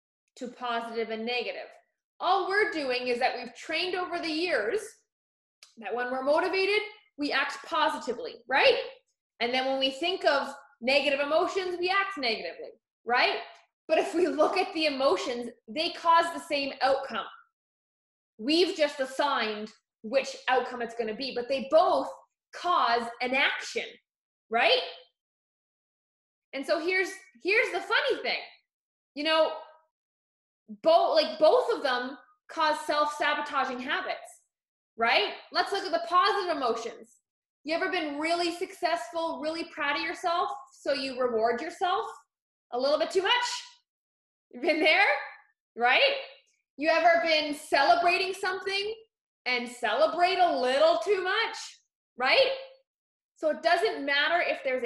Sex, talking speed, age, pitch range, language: female, 135 wpm, 20-39, 260-365 Hz, English